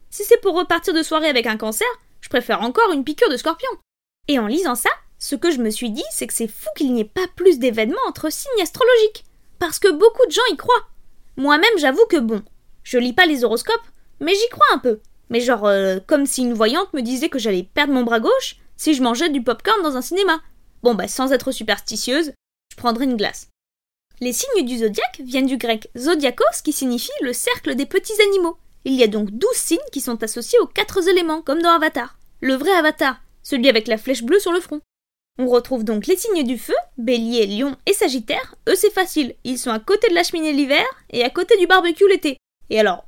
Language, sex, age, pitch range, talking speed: French, female, 20-39, 245-370 Hz, 225 wpm